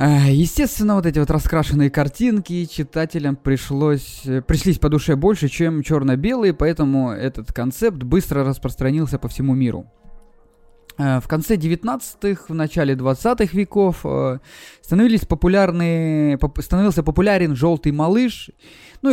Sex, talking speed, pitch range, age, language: male, 115 wpm, 130-175 Hz, 20-39, Russian